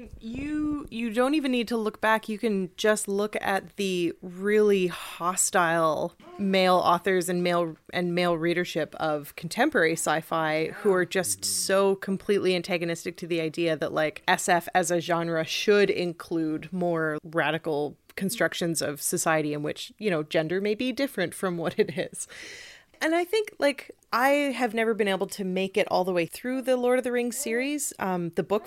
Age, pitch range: 30-49, 170-225 Hz